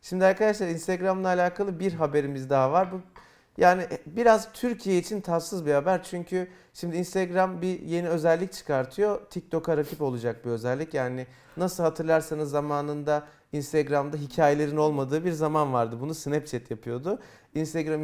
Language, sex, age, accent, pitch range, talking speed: Turkish, male, 40-59, native, 145-185 Hz, 135 wpm